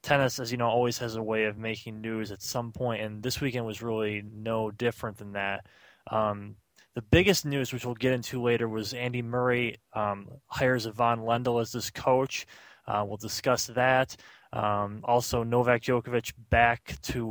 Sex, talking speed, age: male, 180 wpm, 20-39